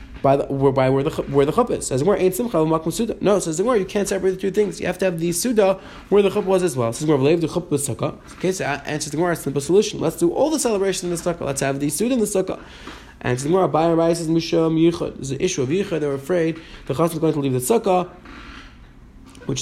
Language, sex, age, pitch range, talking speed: English, male, 20-39, 140-190 Hz, 245 wpm